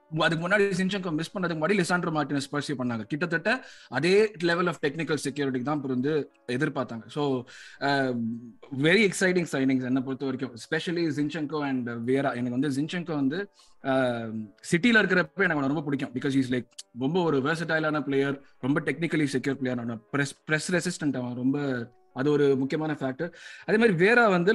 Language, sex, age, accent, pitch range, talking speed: Tamil, male, 20-39, native, 130-165 Hz, 30 wpm